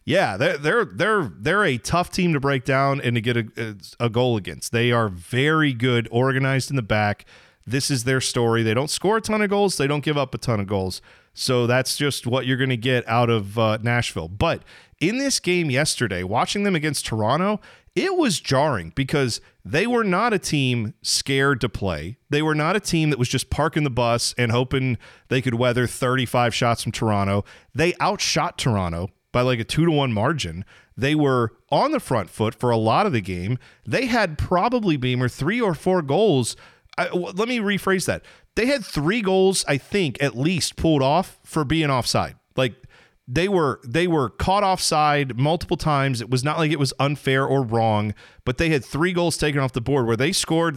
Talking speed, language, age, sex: 205 wpm, English, 40-59, male